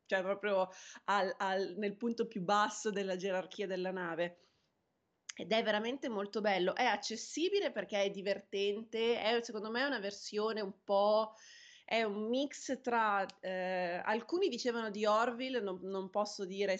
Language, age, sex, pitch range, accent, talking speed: Italian, 20-39, female, 185-230 Hz, native, 155 wpm